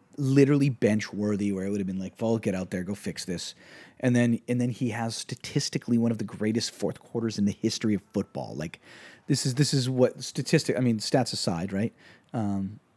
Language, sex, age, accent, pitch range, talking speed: English, male, 30-49, American, 95-130 Hz, 220 wpm